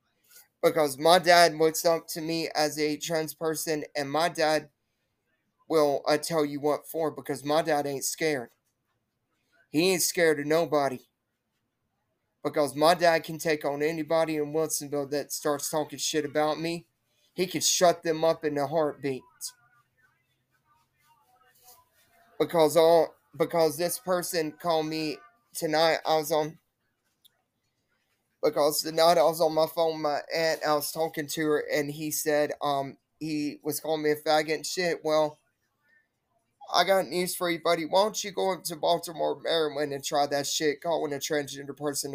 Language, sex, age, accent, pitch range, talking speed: English, male, 30-49, American, 140-160 Hz, 165 wpm